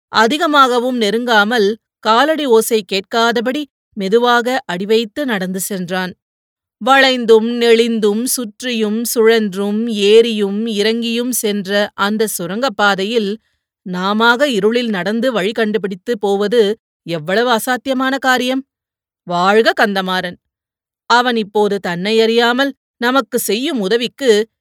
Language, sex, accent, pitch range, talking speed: Tamil, female, native, 205-255 Hz, 90 wpm